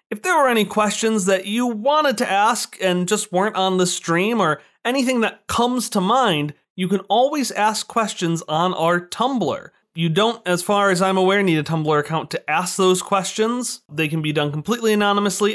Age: 30-49